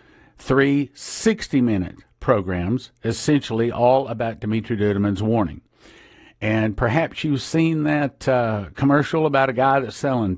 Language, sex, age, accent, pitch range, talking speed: English, male, 50-69, American, 110-135 Hz, 125 wpm